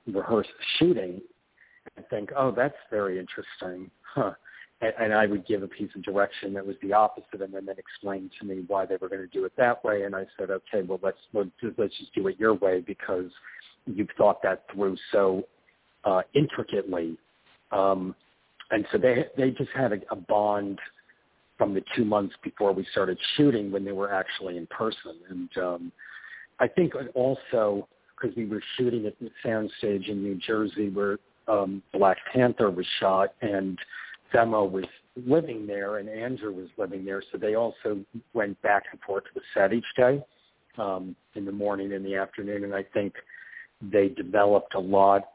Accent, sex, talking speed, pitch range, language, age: American, male, 185 wpm, 95-110 Hz, English, 50-69